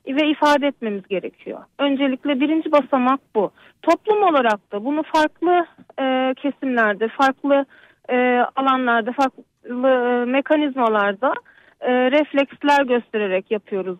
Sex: female